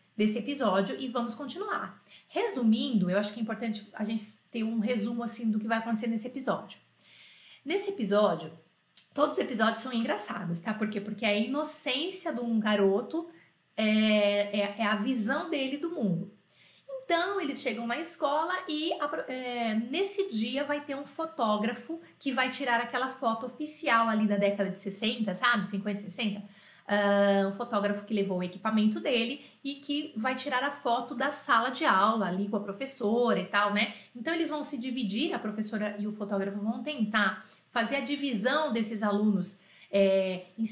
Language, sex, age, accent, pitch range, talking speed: French, female, 30-49, Brazilian, 205-280 Hz, 170 wpm